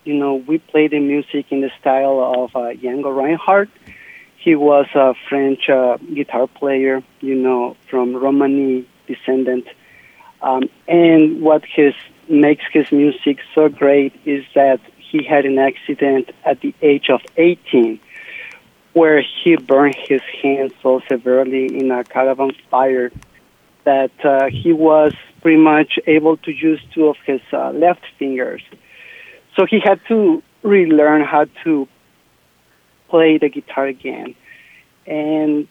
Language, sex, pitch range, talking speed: English, male, 135-165 Hz, 140 wpm